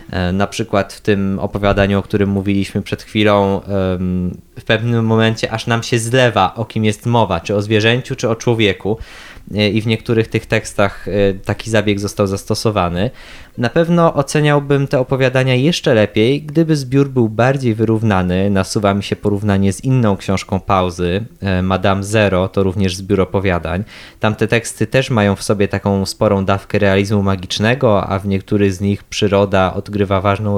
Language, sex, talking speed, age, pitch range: Polish, male, 160 wpm, 20-39, 100-115 Hz